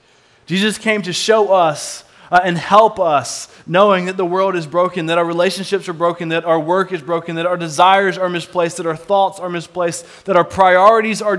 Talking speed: 205 wpm